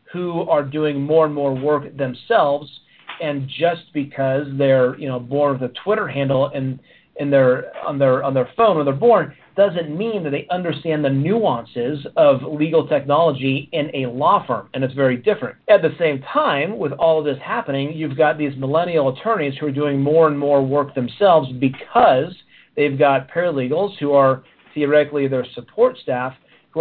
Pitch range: 135-155 Hz